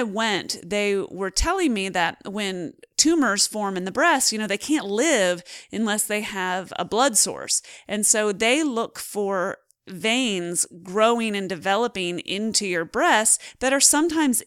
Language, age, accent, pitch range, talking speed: English, 30-49, American, 185-235 Hz, 160 wpm